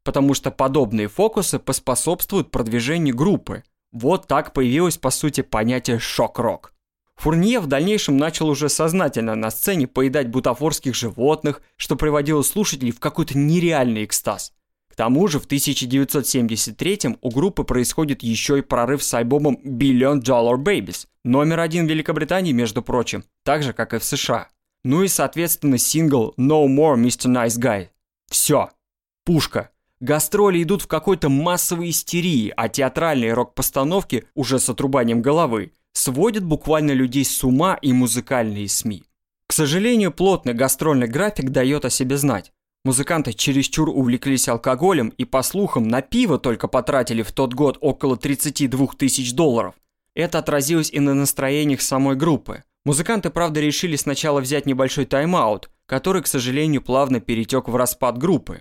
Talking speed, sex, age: 145 wpm, male, 20-39